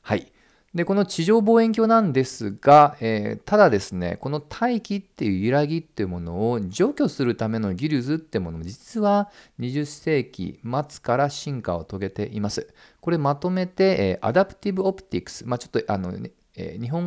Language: Japanese